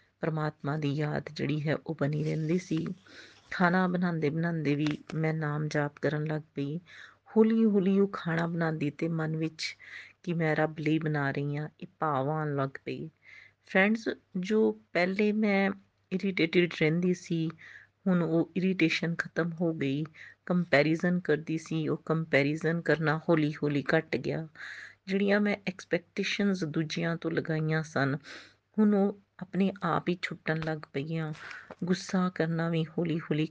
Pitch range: 150-185 Hz